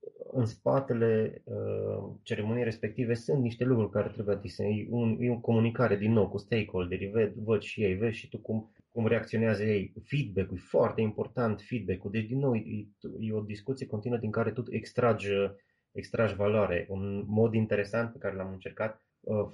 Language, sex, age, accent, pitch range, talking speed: Romanian, male, 20-39, native, 95-120 Hz, 170 wpm